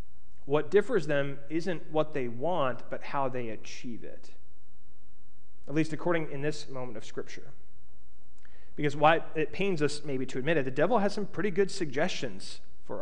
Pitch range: 130-205 Hz